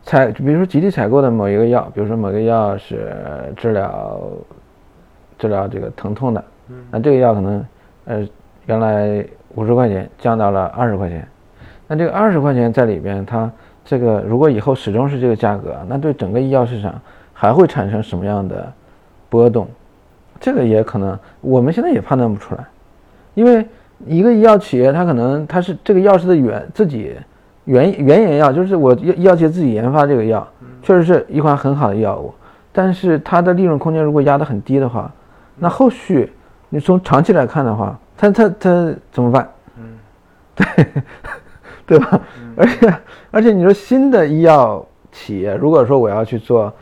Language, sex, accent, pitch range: Chinese, male, native, 110-165 Hz